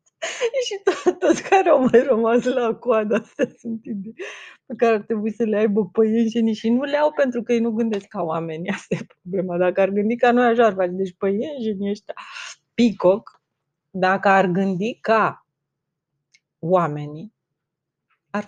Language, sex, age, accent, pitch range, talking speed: Romanian, female, 30-49, native, 170-230 Hz, 155 wpm